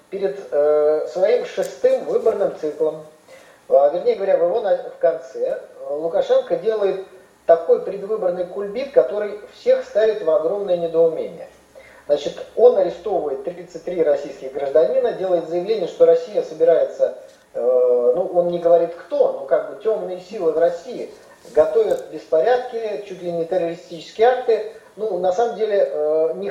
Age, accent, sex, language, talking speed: 40-59, native, male, Russian, 135 wpm